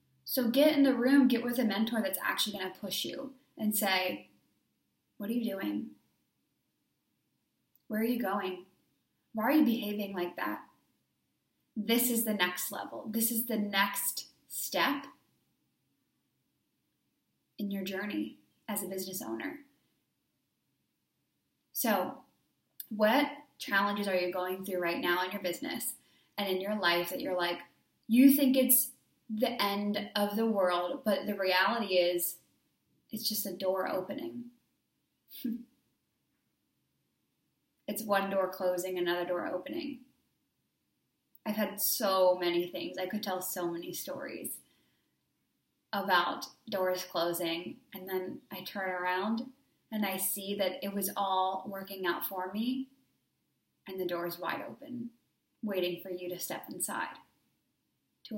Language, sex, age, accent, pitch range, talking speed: English, female, 10-29, American, 185-235 Hz, 140 wpm